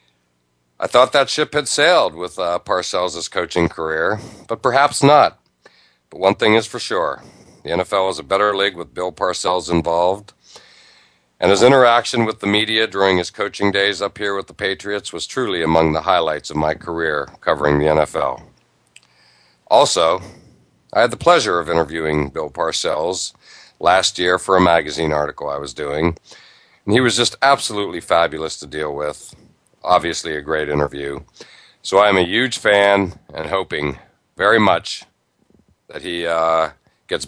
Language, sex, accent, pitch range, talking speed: English, male, American, 75-105 Hz, 160 wpm